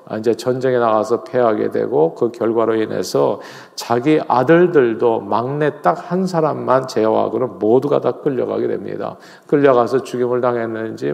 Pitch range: 115-150 Hz